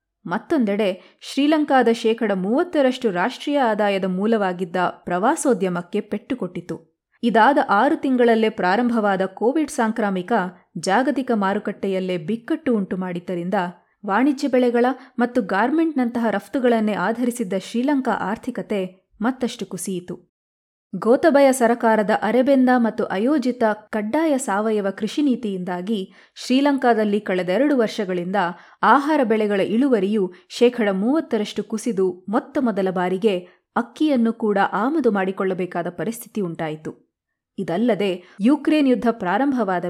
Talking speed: 90 wpm